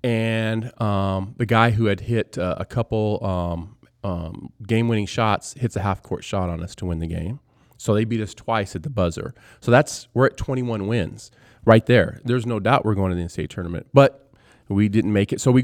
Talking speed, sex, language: 215 wpm, male, English